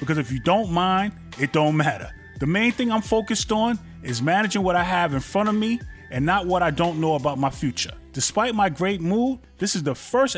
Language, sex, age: English, male, 30-49